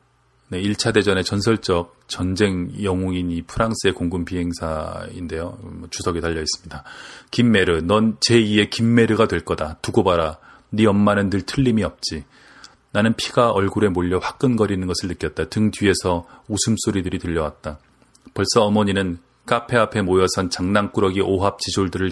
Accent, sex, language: native, male, Korean